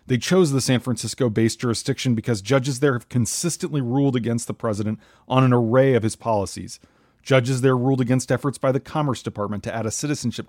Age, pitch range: 40-59, 115-135 Hz